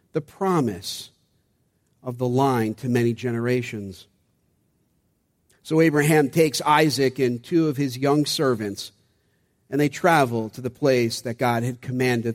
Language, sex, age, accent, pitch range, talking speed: English, male, 50-69, American, 115-145 Hz, 135 wpm